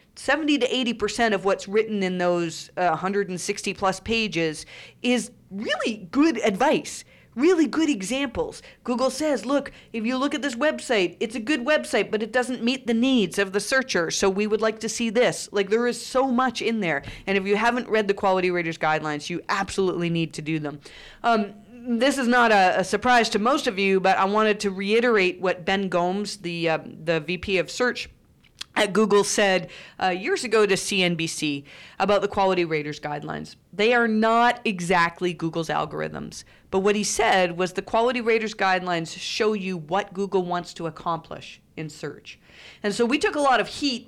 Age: 40-59